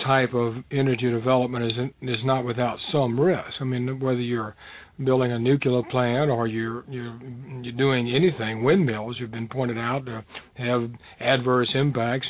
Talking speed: 165 wpm